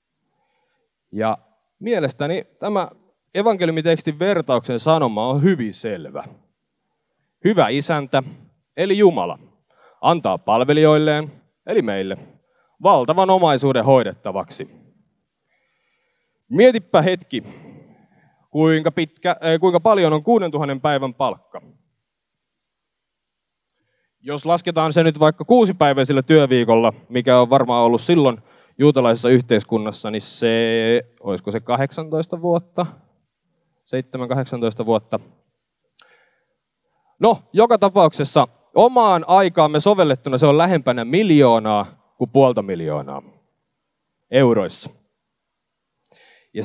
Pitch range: 120-175 Hz